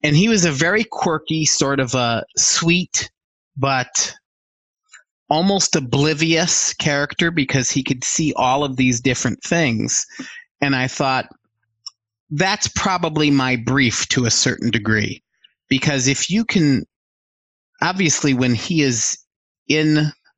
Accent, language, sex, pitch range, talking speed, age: American, English, male, 125-155 Hz, 125 wpm, 30-49